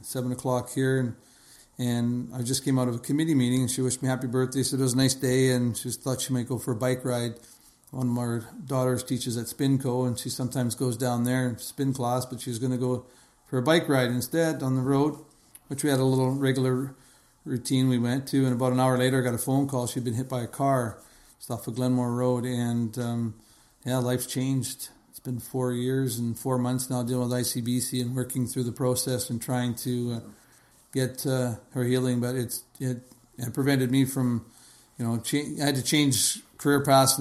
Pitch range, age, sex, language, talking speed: 120-130 Hz, 50-69, male, English, 225 wpm